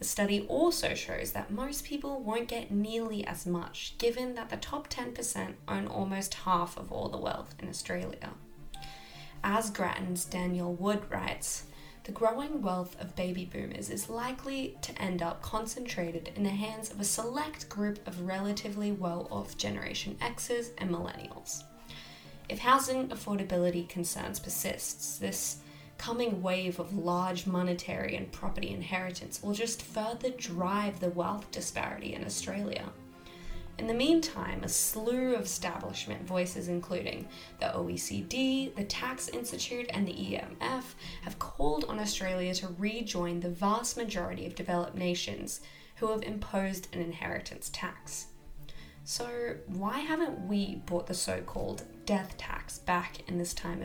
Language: English